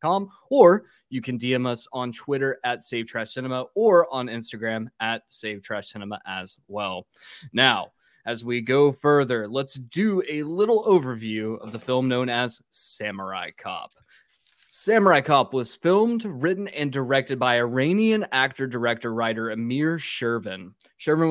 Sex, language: male, English